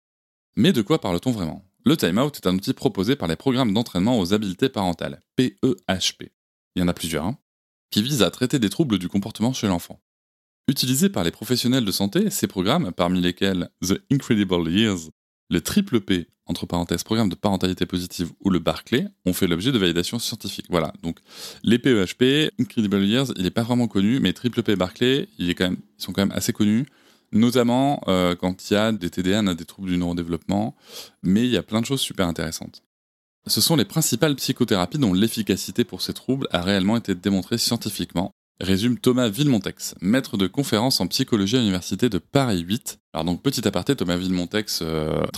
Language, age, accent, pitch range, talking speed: French, 20-39, French, 90-120 Hz, 200 wpm